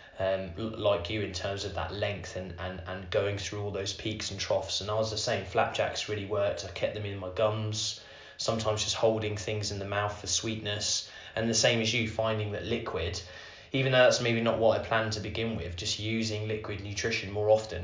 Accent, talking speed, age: British, 220 wpm, 20-39